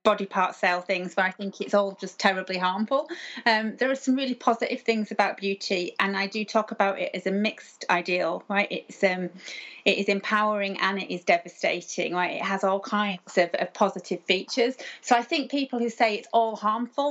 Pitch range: 195-230 Hz